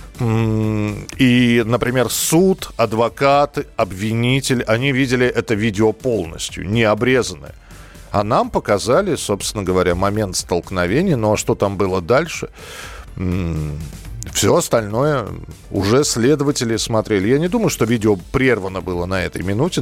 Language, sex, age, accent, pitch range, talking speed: Russian, male, 40-59, native, 95-135 Hz, 120 wpm